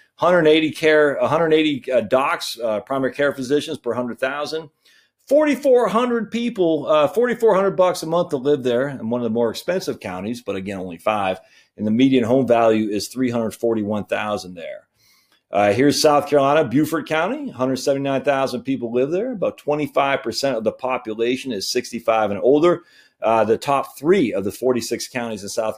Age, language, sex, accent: 40-59, English, male, American